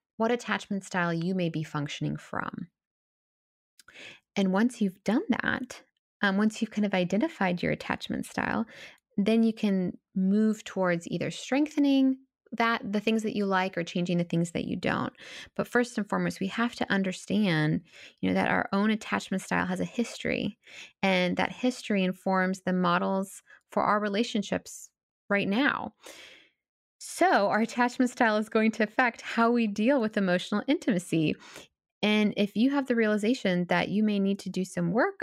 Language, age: English, 20-39